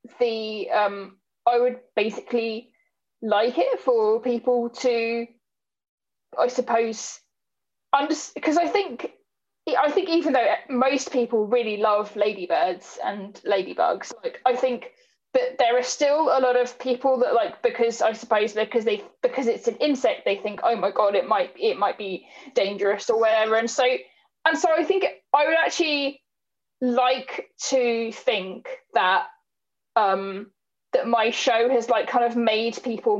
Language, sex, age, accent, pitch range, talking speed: English, female, 20-39, British, 225-300 Hz, 150 wpm